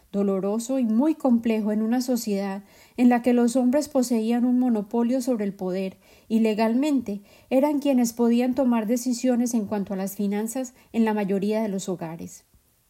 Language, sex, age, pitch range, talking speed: Spanish, female, 30-49, 205-250 Hz, 165 wpm